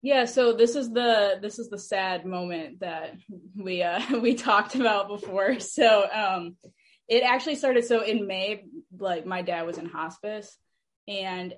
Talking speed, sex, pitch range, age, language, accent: 165 wpm, female, 180-230 Hz, 10-29, English, American